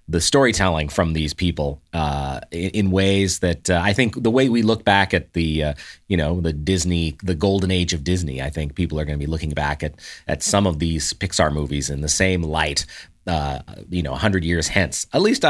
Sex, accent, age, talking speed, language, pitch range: male, American, 30-49, 225 wpm, English, 80-100 Hz